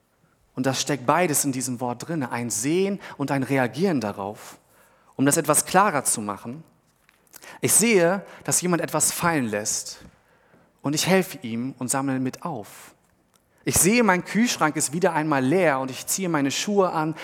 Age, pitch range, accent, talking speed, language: 40-59, 125-170 Hz, German, 170 wpm, German